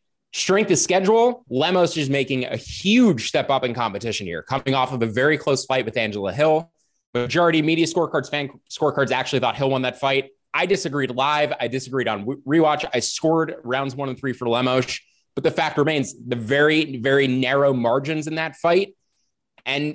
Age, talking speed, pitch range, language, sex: 20-39, 185 wpm, 130-160 Hz, English, male